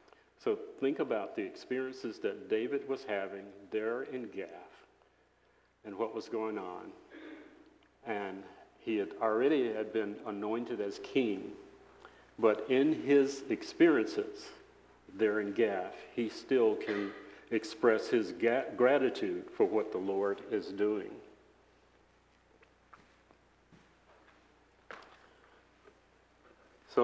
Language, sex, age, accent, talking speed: English, male, 50-69, American, 100 wpm